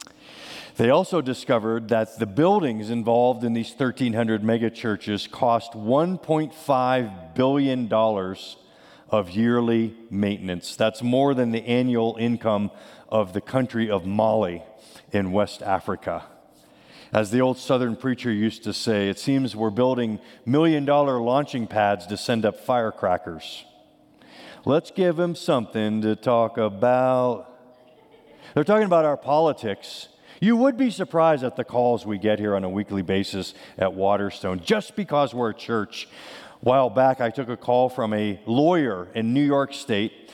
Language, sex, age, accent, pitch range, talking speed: English, male, 50-69, American, 110-135 Hz, 145 wpm